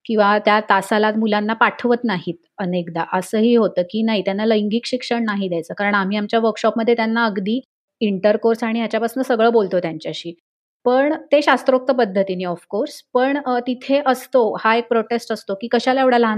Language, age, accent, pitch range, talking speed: Marathi, 30-49, native, 200-245 Hz, 165 wpm